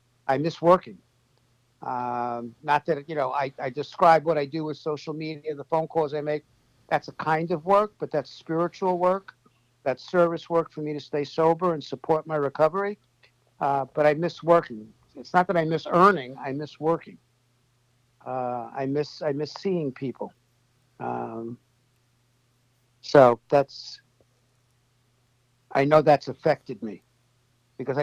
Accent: American